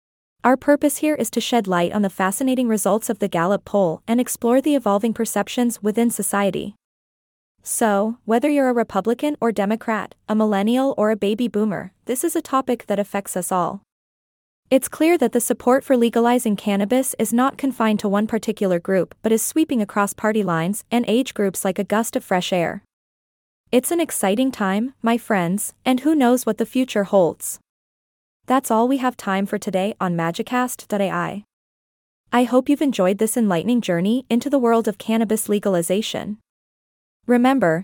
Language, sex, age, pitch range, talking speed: English, female, 20-39, 200-250 Hz, 175 wpm